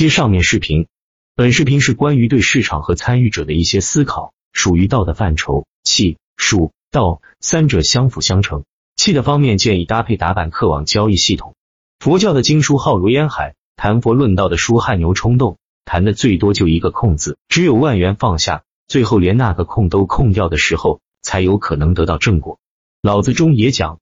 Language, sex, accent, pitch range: Chinese, male, native, 85-125 Hz